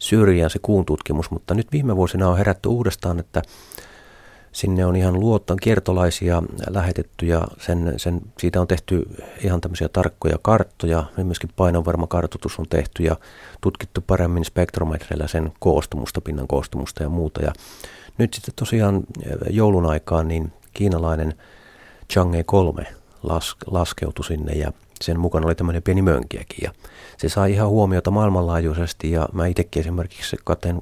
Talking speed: 140 wpm